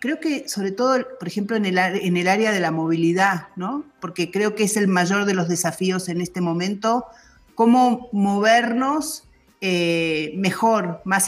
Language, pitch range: Spanish, 170-220 Hz